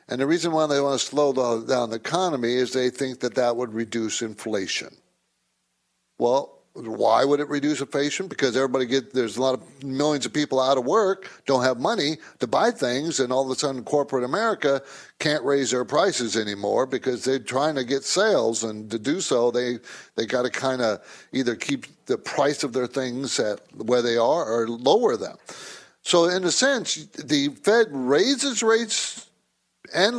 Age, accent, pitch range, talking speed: 60-79, American, 125-155 Hz, 190 wpm